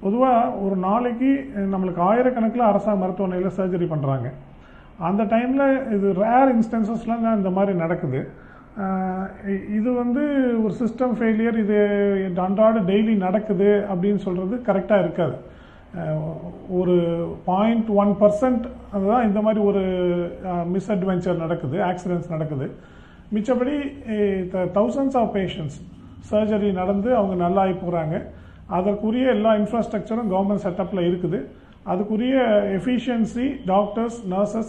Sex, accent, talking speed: male, native, 110 wpm